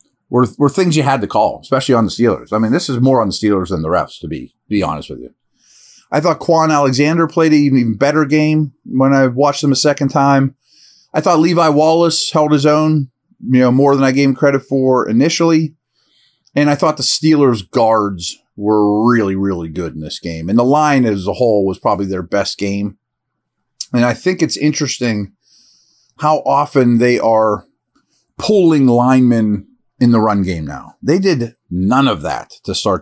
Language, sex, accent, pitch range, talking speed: English, male, American, 110-140 Hz, 200 wpm